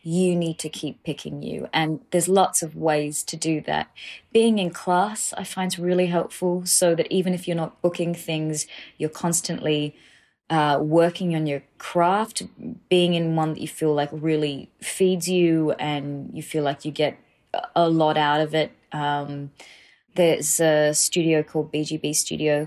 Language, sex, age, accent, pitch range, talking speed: English, female, 20-39, Australian, 150-180 Hz, 170 wpm